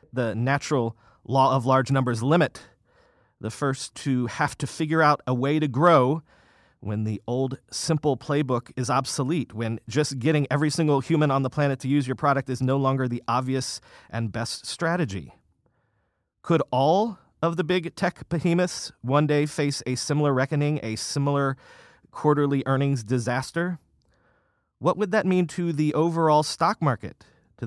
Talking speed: 160 wpm